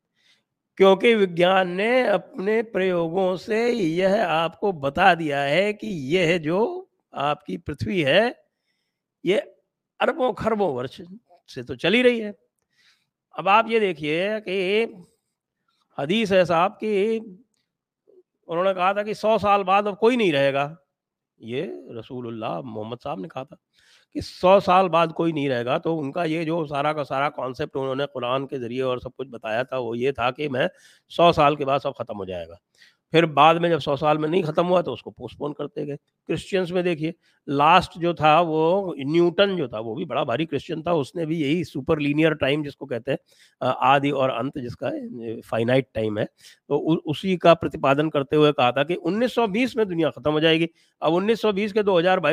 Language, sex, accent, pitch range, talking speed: English, male, Indian, 145-195 Hz, 175 wpm